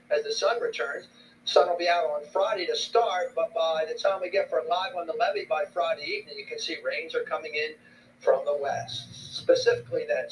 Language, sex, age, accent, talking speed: English, male, 50-69, American, 220 wpm